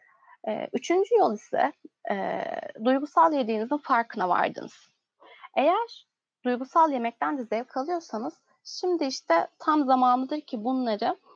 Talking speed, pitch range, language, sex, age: 105 wpm, 225-285 Hz, Turkish, female, 30-49